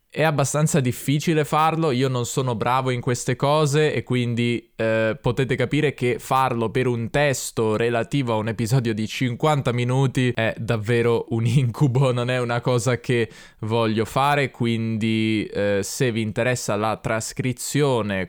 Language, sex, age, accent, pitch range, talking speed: Italian, male, 20-39, native, 105-130 Hz, 150 wpm